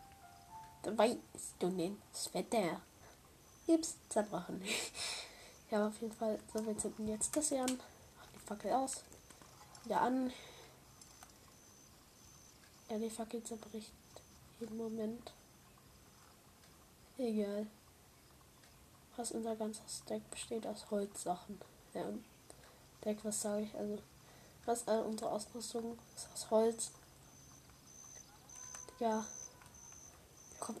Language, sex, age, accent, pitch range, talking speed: German, female, 10-29, German, 215-235 Hz, 105 wpm